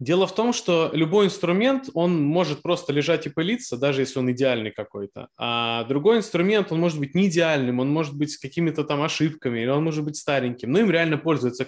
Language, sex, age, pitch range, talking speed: Russian, male, 20-39, 130-170 Hz, 210 wpm